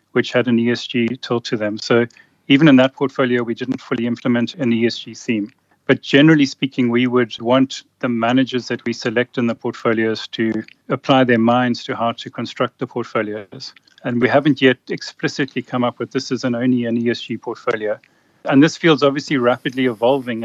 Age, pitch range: 40-59, 120-130 Hz